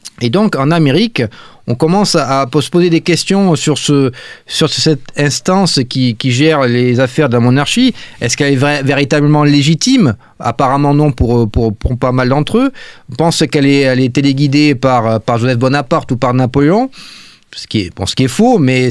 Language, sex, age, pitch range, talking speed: French, male, 30-49, 120-155 Hz, 200 wpm